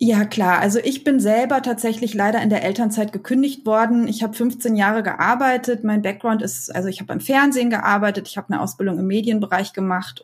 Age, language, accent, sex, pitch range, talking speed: 20-39, German, German, female, 205-235 Hz, 200 wpm